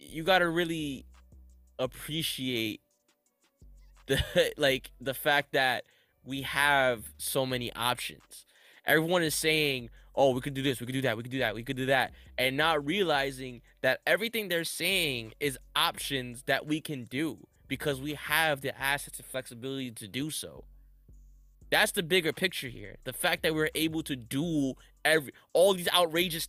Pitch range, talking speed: 130-160 Hz, 165 wpm